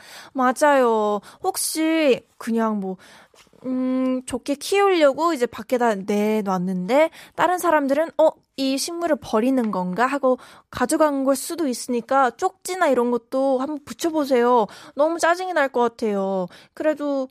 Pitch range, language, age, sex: 235-300 Hz, Korean, 20-39, female